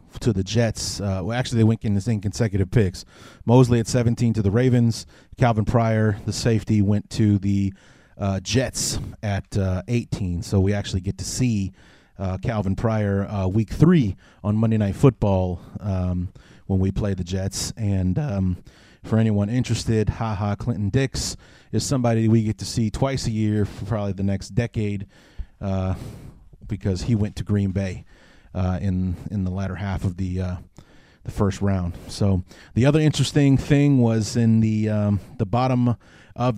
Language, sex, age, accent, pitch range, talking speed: English, male, 30-49, American, 100-115 Hz, 175 wpm